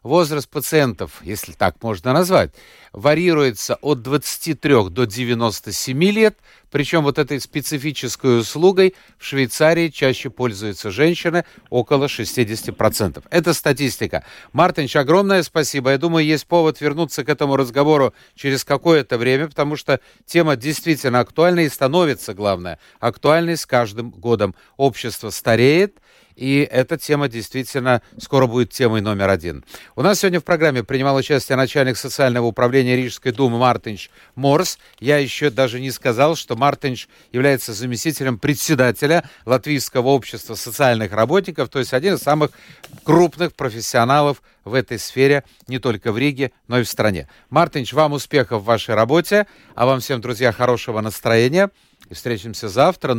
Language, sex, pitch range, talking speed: Russian, male, 120-150 Hz, 140 wpm